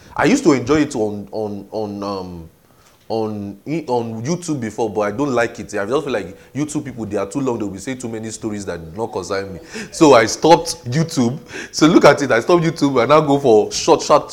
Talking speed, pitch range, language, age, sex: 230 wpm, 105-165 Hz, English, 30-49, male